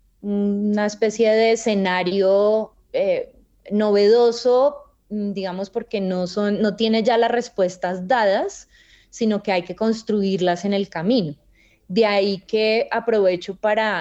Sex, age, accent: female, 20-39, Colombian